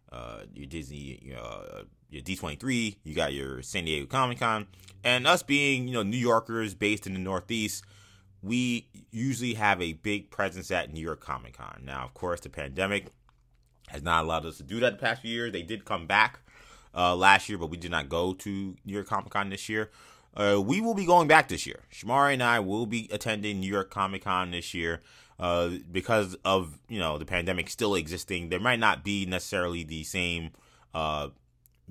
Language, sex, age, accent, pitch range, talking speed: English, male, 20-39, American, 80-105 Hz, 200 wpm